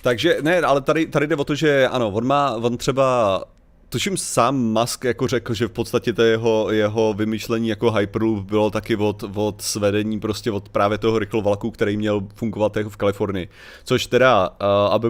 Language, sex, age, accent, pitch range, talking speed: Czech, male, 30-49, native, 105-115 Hz, 185 wpm